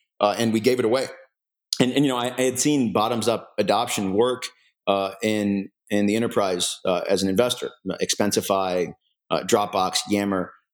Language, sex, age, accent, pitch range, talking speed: English, male, 40-59, American, 105-125 Hz, 170 wpm